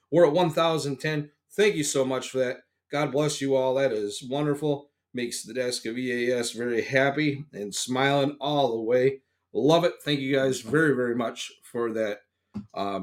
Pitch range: 135-170 Hz